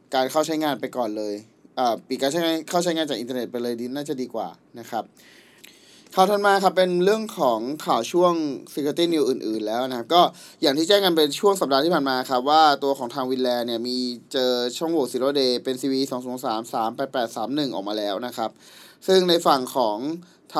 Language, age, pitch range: Thai, 20-39, 130-170 Hz